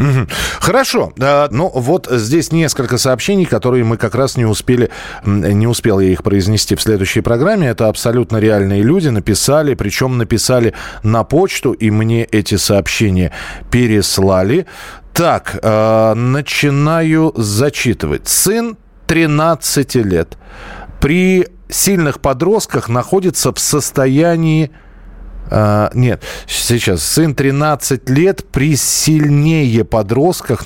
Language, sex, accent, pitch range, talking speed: Russian, male, native, 105-150 Hz, 105 wpm